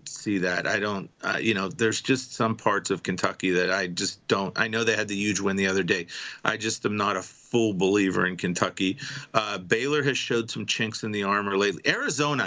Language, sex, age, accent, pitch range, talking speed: English, male, 40-59, American, 105-130 Hz, 225 wpm